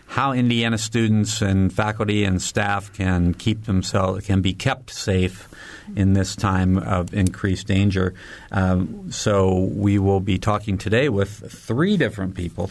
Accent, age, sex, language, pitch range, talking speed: American, 50-69, male, English, 95-115 Hz, 145 wpm